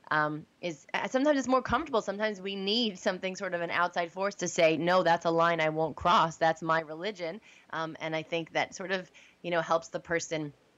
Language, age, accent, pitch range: English, 20-39, American, 155-185 Hz